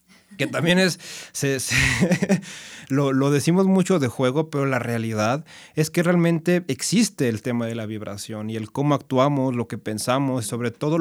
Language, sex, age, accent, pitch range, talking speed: Spanish, male, 30-49, Mexican, 115-140 Hz, 175 wpm